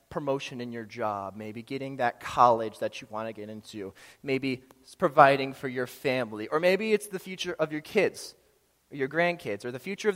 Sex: male